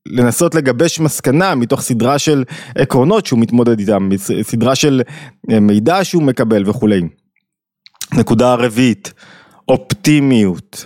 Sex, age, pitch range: male, 20-39, 110-140 Hz